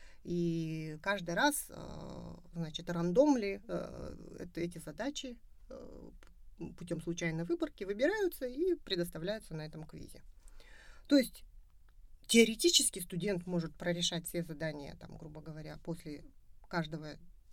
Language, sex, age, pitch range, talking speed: English, female, 30-49, 160-195 Hz, 105 wpm